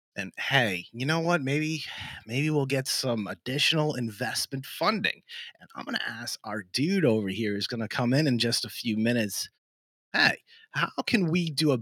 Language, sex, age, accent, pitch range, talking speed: English, male, 30-49, American, 110-145 Hz, 195 wpm